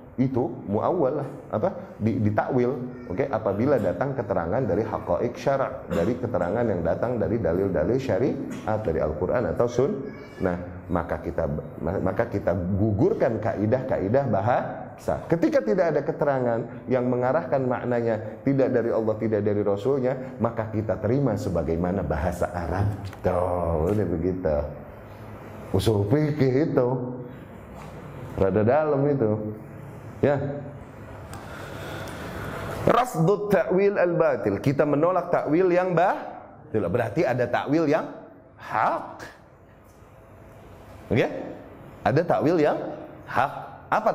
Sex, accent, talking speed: male, native, 110 wpm